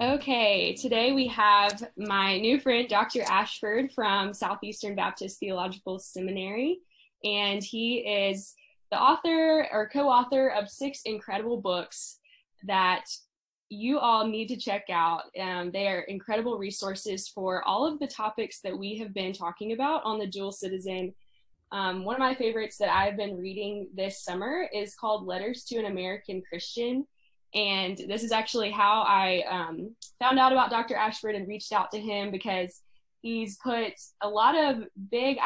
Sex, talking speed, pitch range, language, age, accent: female, 160 wpm, 195-235 Hz, English, 10-29, American